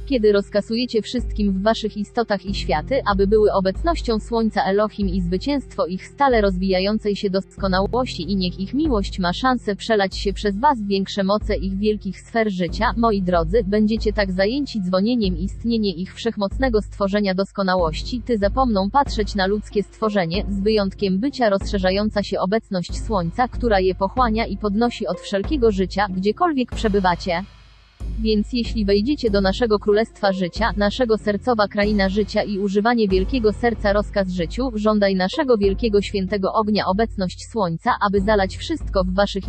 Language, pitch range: English, 195-225 Hz